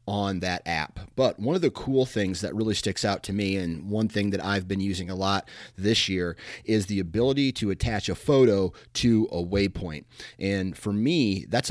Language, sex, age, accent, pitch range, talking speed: English, male, 30-49, American, 90-105 Hz, 205 wpm